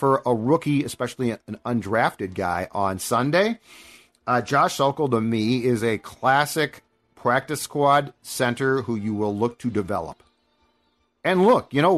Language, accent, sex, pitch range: English, American, male, 120-150 Hz